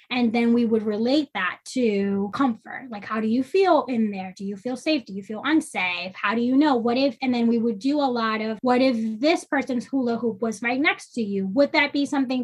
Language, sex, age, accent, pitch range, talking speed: English, female, 10-29, American, 225-280 Hz, 250 wpm